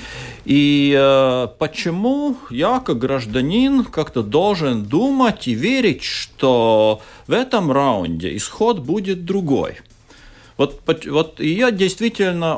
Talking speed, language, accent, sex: 105 wpm, Russian, native, male